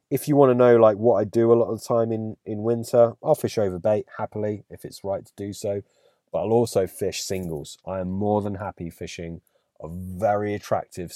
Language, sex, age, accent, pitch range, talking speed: English, male, 30-49, British, 90-120 Hz, 225 wpm